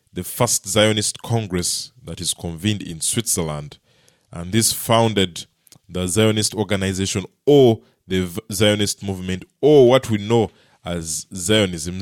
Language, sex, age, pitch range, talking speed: English, male, 20-39, 105-145 Hz, 125 wpm